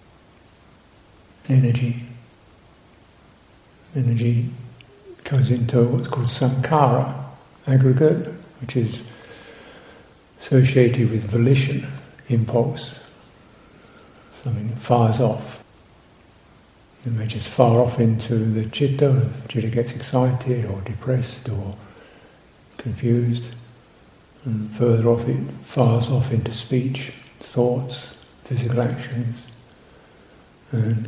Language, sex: English, male